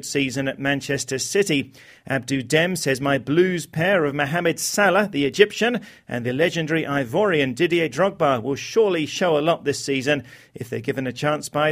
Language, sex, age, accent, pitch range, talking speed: English, male, 40-59, British, 135-165 Hz, 175 wpm